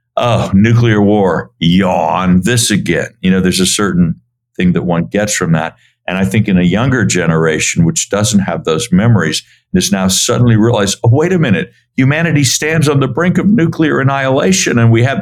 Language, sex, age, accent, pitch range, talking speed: English, male, 60-79, American, 95-120 Hz, 190 wpm